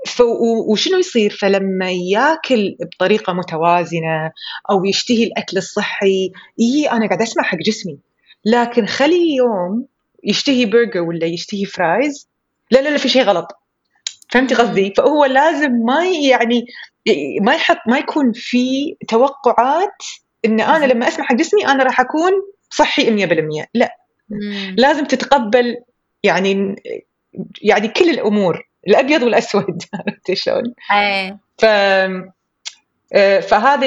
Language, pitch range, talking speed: Arabic, 190-255 Hz, 115 wpm